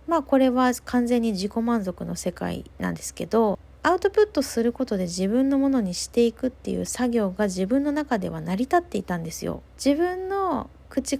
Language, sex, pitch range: Japanese, female, 205-290 Hz